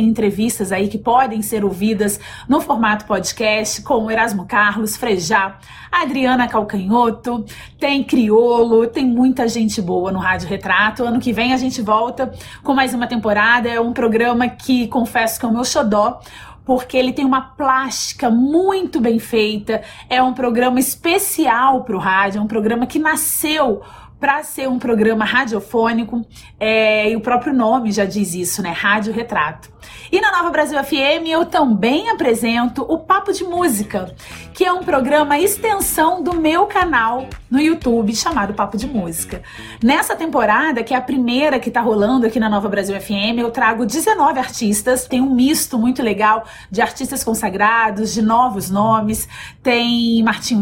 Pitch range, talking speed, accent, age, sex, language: 215-265 Hz, 160 wpm, Brazilian, 20-39, female, Portuguese